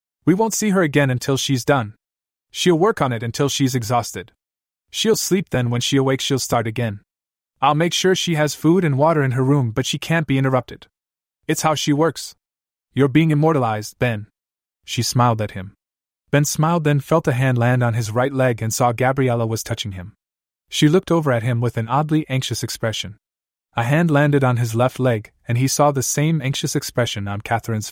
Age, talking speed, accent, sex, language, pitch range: 20-39, 205 wpm, American, male, English, 110-145 Hz